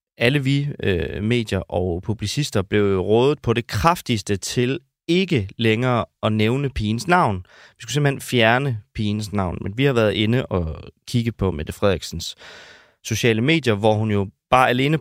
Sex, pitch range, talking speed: male, 100-130 Hz, 165 wpm